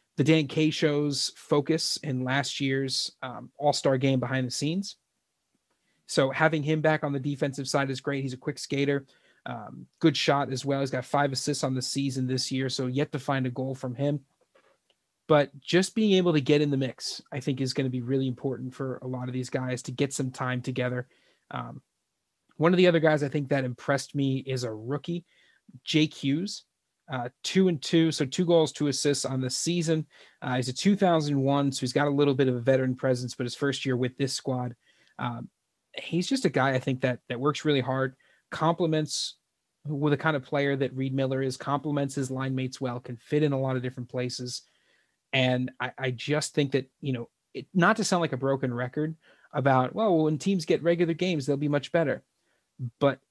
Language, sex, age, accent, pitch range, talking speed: English, male, 30-49, American, 130-150 Hz, 215 wpm